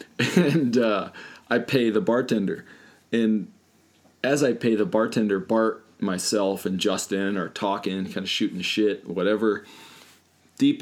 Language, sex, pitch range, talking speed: English, male, 105-155 Hz, 135 wpm